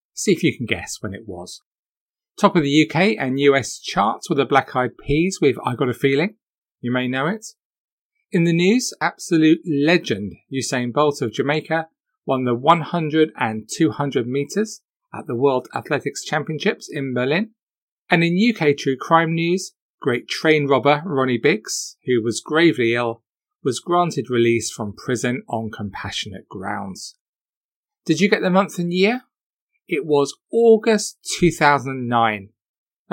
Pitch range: 120-170 Hz